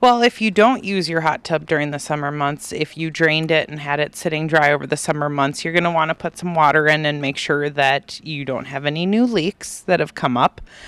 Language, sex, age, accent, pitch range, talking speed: English, female, 30-49, American, 135-165 Hz, 265 wpm